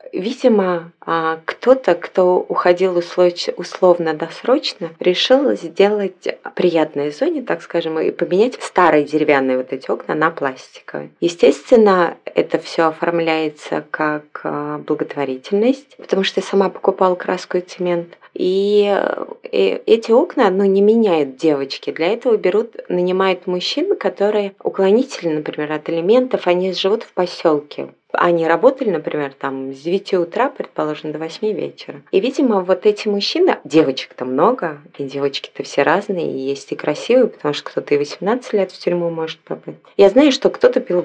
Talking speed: 145 wpm